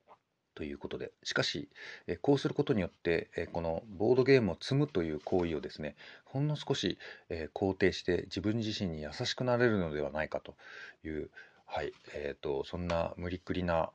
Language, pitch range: Japanese, 85-135 Hz